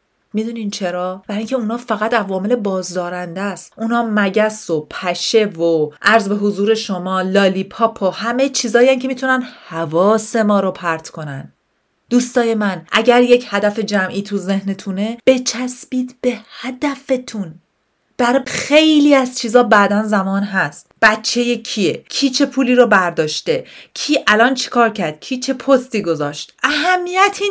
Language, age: Persian, 30-49